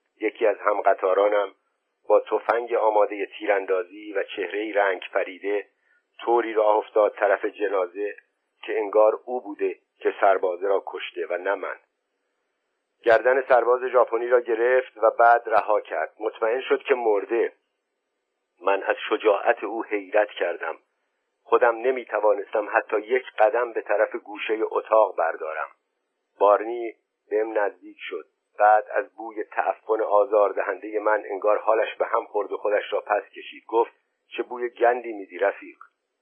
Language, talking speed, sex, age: Persian, 140 wpm, male, 50-69